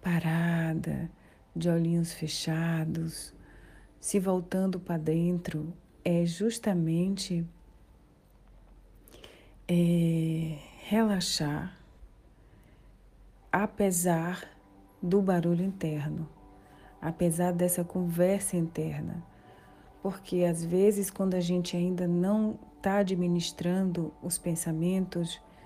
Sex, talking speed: female, 70 wpm